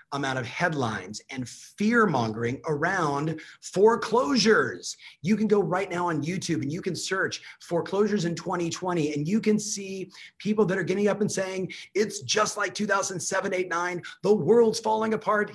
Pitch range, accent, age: 145-195 Hz, American, 40-59